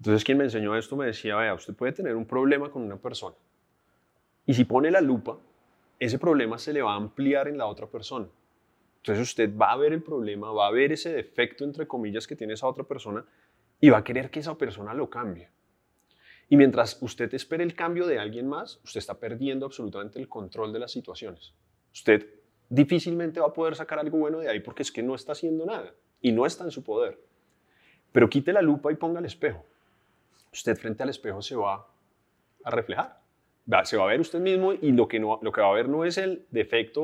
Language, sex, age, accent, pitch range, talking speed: Spanish, male, 30-49, Colombian, 110-150 Hz, 220 wpm